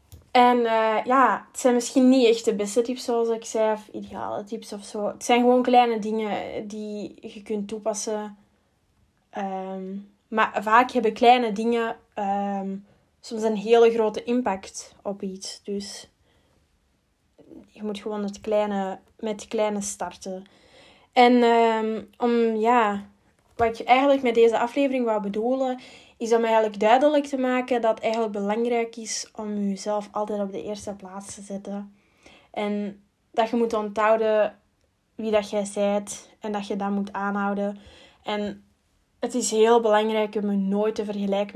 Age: 10-29